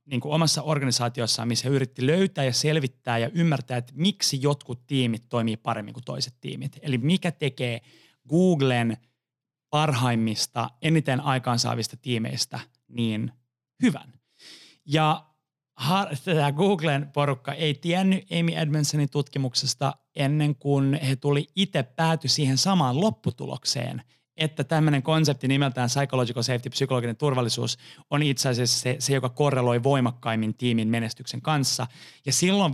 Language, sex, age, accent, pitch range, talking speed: Finnish, male, 30-49, native, 120-145 Hz, 130 wpm